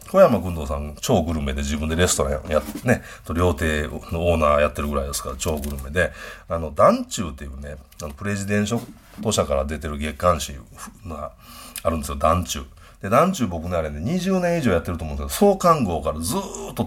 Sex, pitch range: male, 75-120 Hz